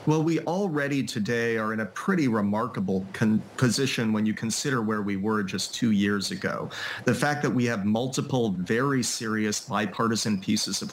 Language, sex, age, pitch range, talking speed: English, male, 30-49, 105-130 Hz, 170 wpm